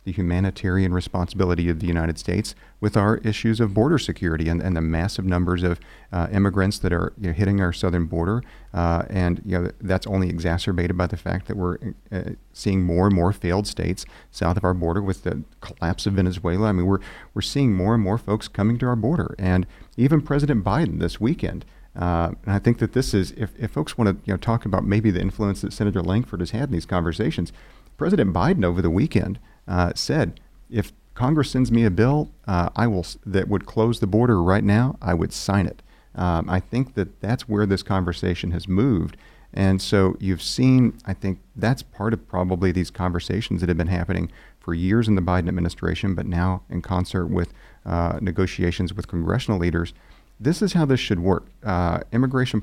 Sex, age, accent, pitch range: male, 40-59, American, 90-110 Hz